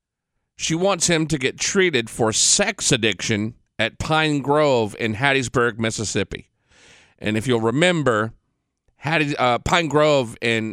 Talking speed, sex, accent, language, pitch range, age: 130 wpm, male, American, English, 110-155 Hz, 40-59